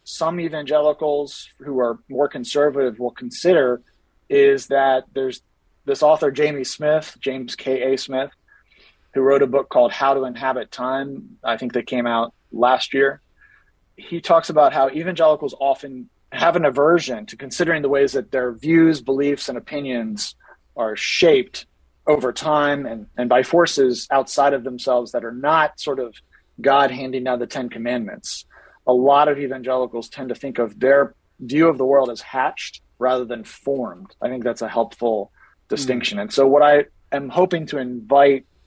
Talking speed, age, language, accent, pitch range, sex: 165 wpm, 30-49, English, American, 125-150 Hz, male